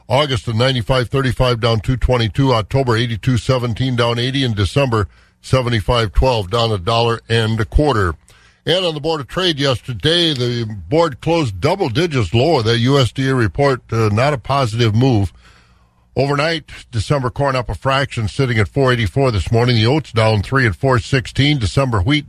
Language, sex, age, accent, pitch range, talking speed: English, male, 50-69, American, 115-140 Hz, 155 wpm